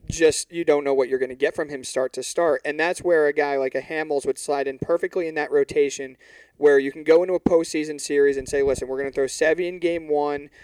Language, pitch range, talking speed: English, 140-170 Hz, 270 wpm